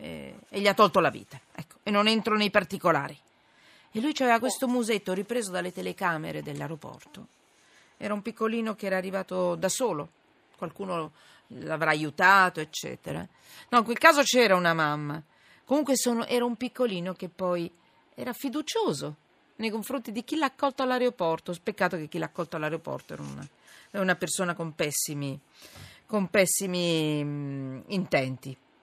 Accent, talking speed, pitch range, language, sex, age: native, 150 wpm, 165-230 Hz, Italian, female, 40-59